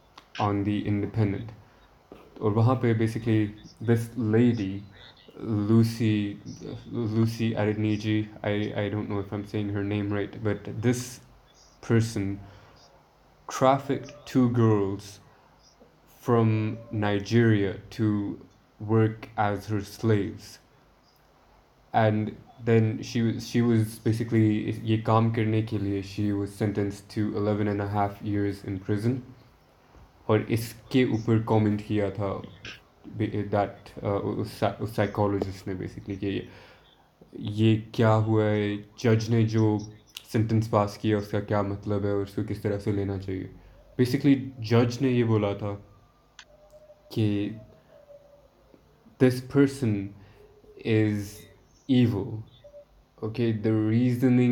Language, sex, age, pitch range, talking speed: Urdu, male, 20-39, 105-115 Hz, 105 wpm